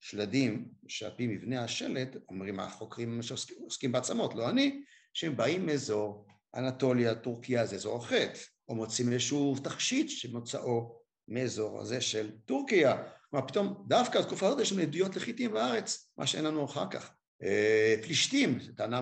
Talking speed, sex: 135 wpm, male